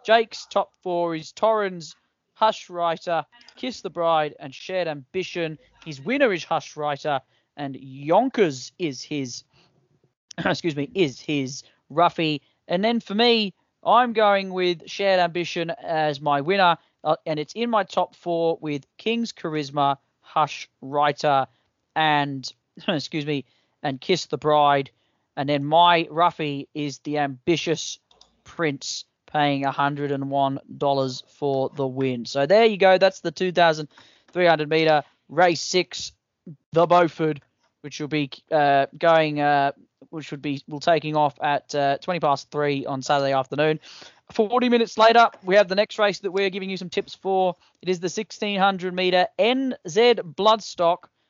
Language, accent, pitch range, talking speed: English, Australian, 145-185 Hz, 155 wpm